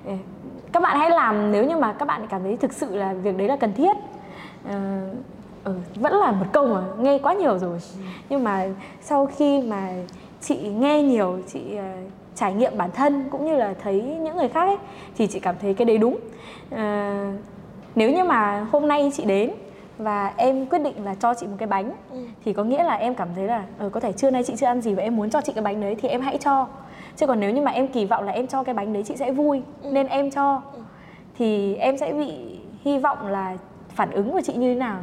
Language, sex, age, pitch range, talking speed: Vietnamese, female, 10-29, 195-275 Hz, 240 wpm